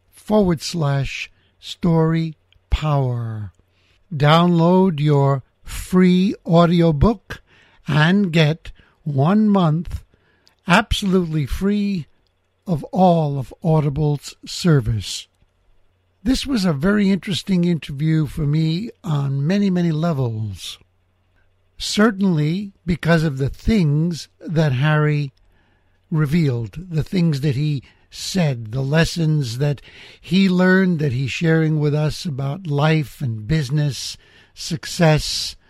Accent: American